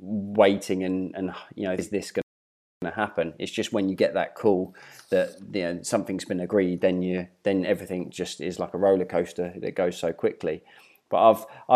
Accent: British